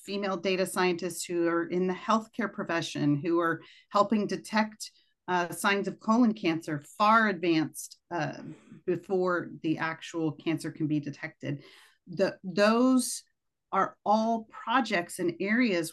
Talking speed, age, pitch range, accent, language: 130 wpm, 40-59, 175-225 Hz, American, English